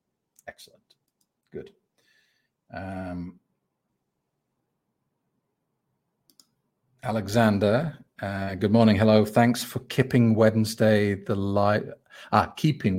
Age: 40-59